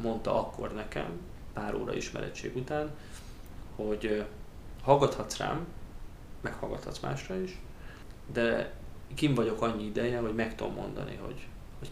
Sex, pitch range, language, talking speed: male, 105-120 Hz, Hungarian, 120 wpm